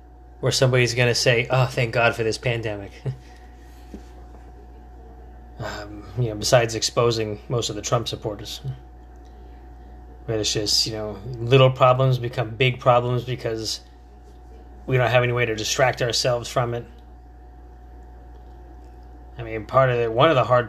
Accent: American